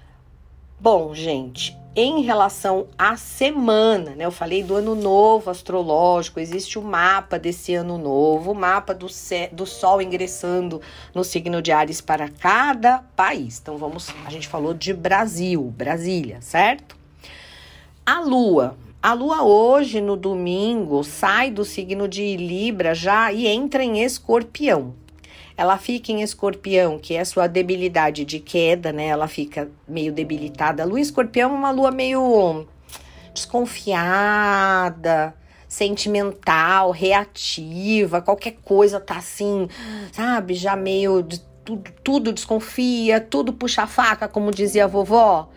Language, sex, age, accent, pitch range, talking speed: Portuguese, female, 50-69, Brazilian, 165-220 Hz, 135 wpm